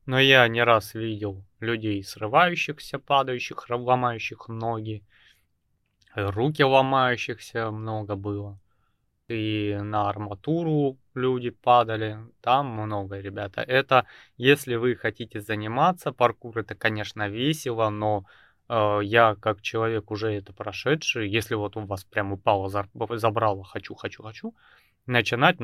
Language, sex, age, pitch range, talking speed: Russian, male, 20-39, 105-125 Hz, 115 wpm